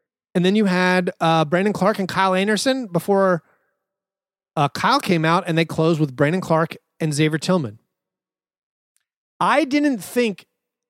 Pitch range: 150-190 Hz